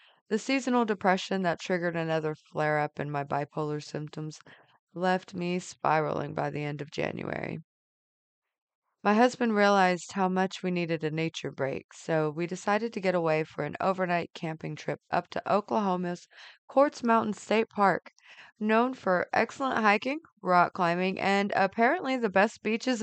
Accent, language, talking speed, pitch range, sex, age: American, English, 150 wpm, 160-210 Hz, female, 20-39